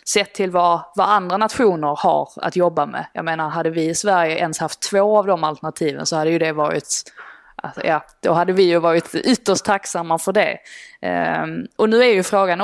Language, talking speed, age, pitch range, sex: Swedish, 210 wpm, 20-39, 165-215 Hz, female